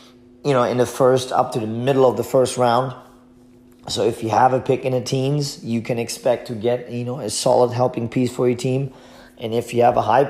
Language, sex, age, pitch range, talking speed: English, male, 30-49, 115-130 Hz, 245 wpm